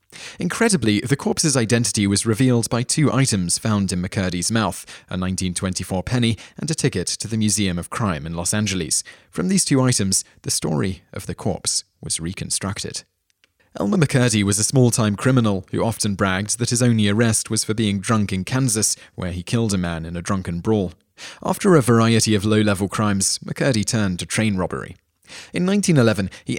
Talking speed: 180 wpm